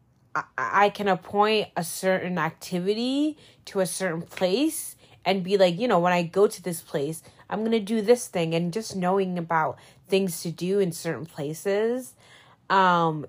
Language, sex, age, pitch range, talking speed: English, female, 20-39, 160-200 Hz, 175 wpm